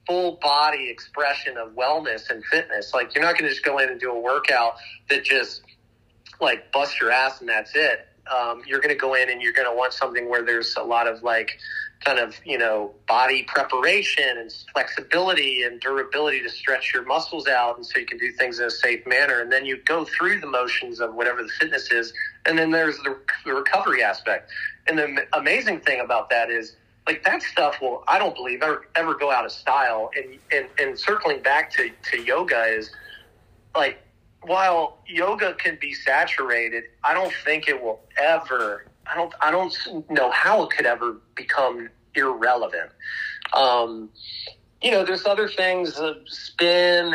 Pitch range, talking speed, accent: 125-175 Hz, 190 wpm, American